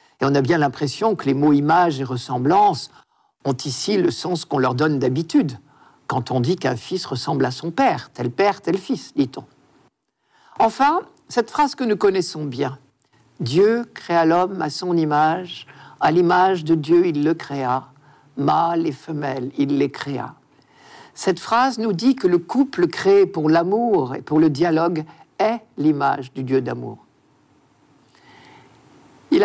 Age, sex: 50-69, male